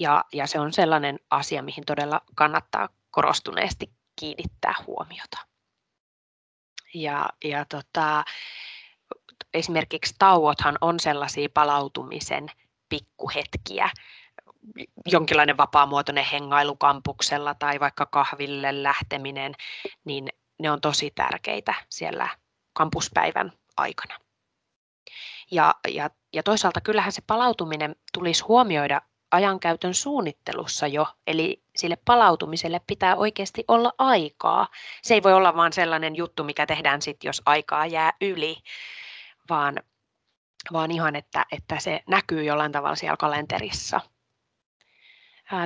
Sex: female